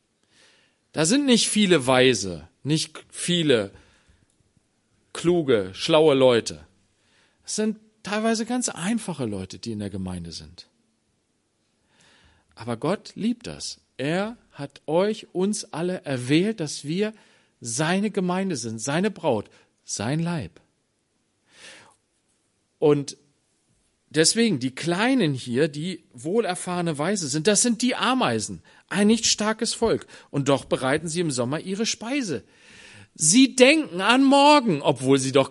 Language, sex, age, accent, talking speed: German, male, 40-59, German, 120 wpm